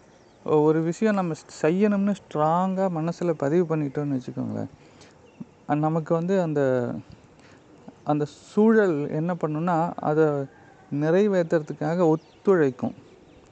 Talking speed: 85 wpm